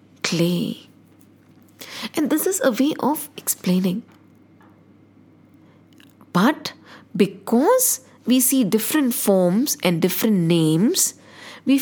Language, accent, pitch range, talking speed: English, Indian, 190-270 Hz, 90 wpm